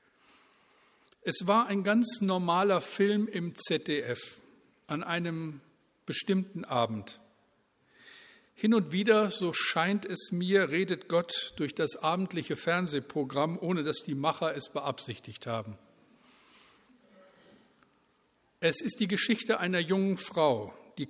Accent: German